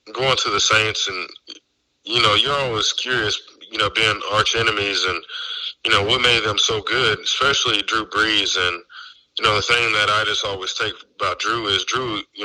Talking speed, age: 200 wpm, 20-39